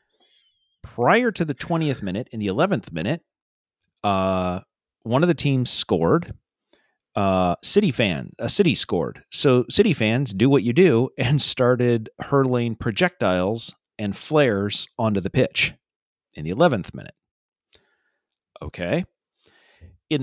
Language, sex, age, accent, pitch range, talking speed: English, male, 40-59, American, 105-145 Hz, 135 wpm